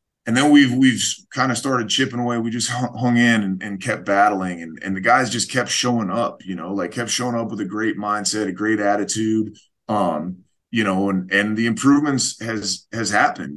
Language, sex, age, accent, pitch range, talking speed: English, male, 20-39, American, 100-115 Hz, 210 wpm